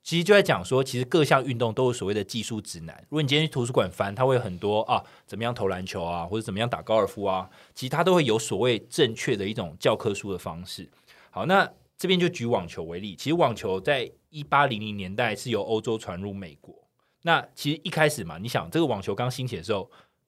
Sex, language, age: male, Chinese, 20-39